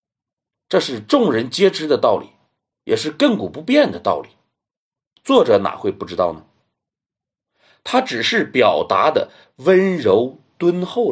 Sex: male